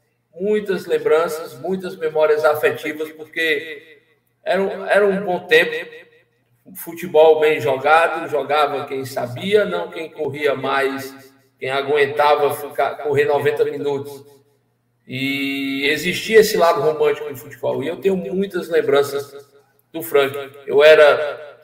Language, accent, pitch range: Portuguese, Brazilian, 140-220 Hz